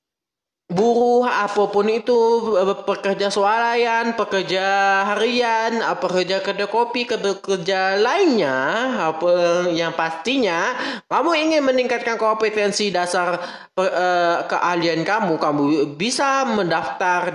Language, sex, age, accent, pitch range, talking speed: Indonesian, male, 20-39, native, 185-245 Hz, 95 wpm